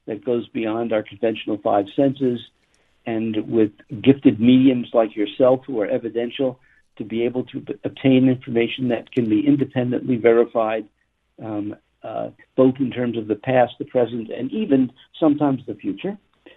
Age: 60-79